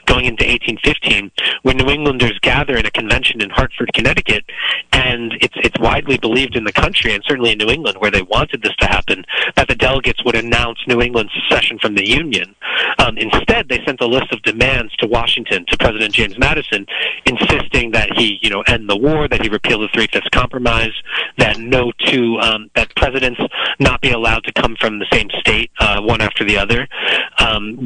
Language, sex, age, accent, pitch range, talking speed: English, male, 30-49, American, 105-125 Hz, 200 wpm